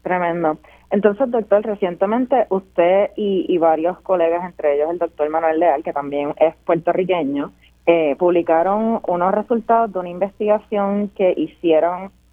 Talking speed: 135 wpm